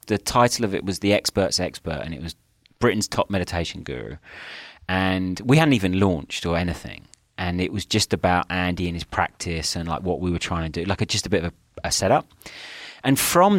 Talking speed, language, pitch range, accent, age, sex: 215 wpm, English, 85-115 Hz, British, 30-49, male